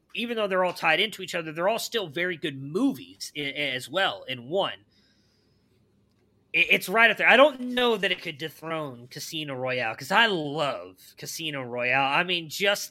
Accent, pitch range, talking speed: American, 145-190 Hz, 180 wpm